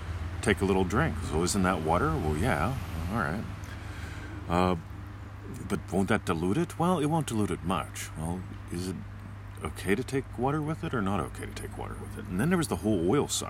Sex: male